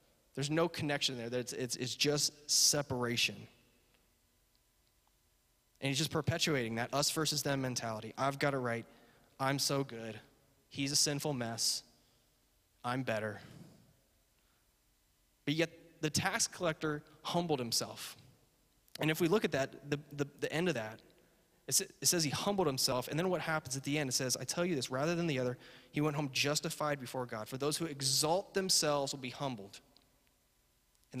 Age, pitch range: 20-39, 125-155 Hz